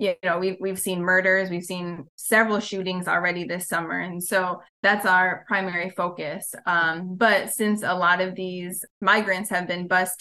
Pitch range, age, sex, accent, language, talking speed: 175-195 Hz, 20-39, female, American, English, 175 wpm